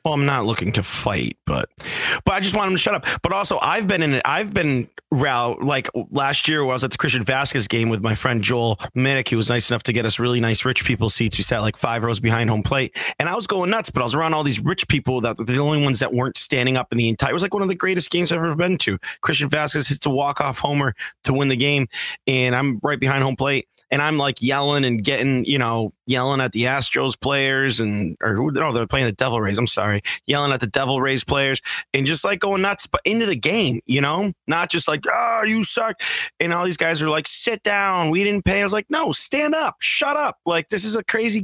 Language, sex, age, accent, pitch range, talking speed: English, male, 30-49, American, 125-175 Hz, 265 wpm